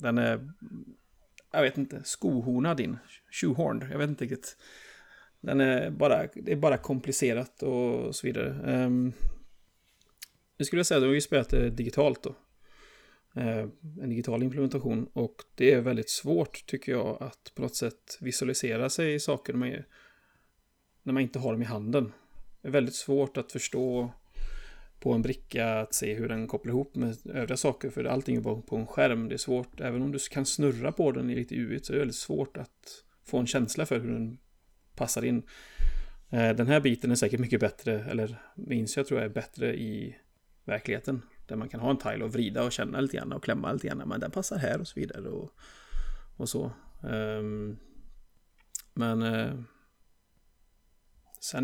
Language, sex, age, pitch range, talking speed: Swedish, male, 30-49, 115-135 Hz, 175 wpm